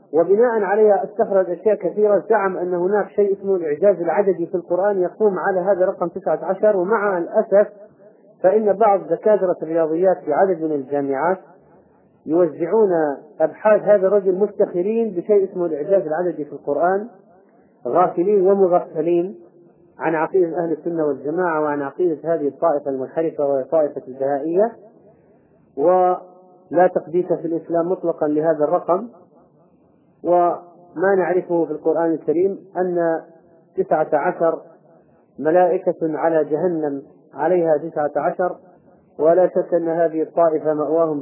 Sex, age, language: male, 40-59, Arabic